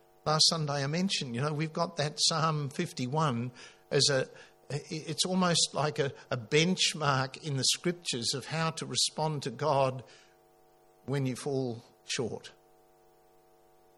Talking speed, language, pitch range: 135 wpm, English, 110-160 Hz